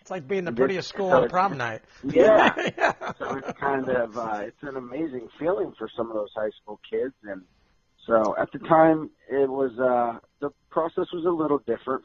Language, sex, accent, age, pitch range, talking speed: English, male, American, 40-59, 95-115 Hz, 200 wpm